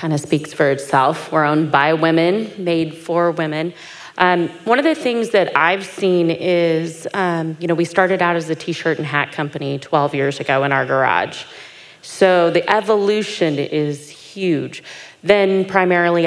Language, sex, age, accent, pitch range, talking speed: English, female, 30-49, American, 155-185 Hz, 170 wpm